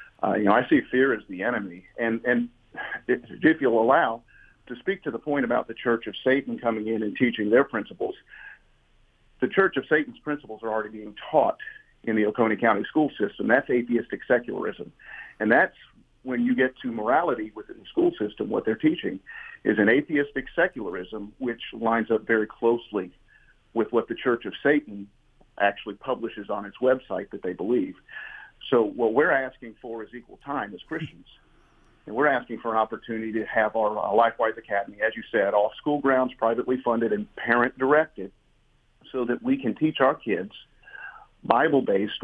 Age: 50-69